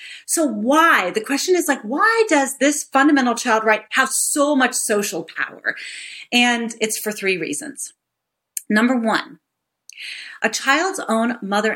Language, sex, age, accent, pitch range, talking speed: English, female, 40-59, American, 190-260 Hz, 145 wpm